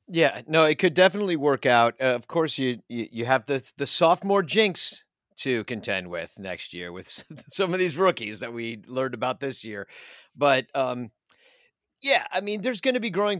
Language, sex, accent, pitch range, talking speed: English, male, American, 120-155 Hz, 195 wpm